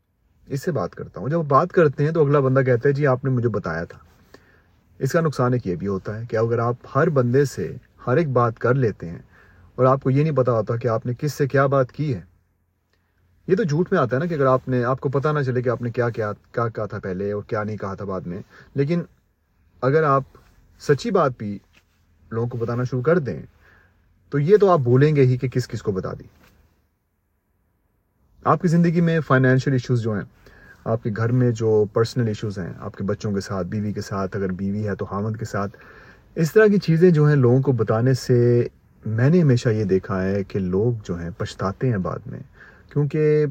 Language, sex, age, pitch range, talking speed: Urdu, male, 30-49, 100-140 Hz, 230 wpm